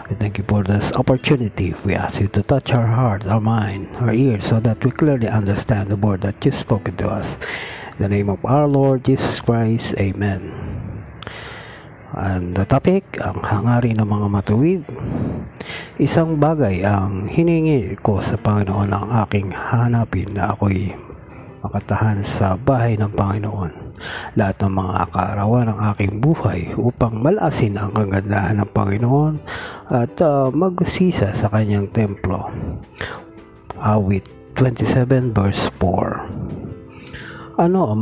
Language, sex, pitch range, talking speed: Filipino, male, 100-130 Hz, 140 wpm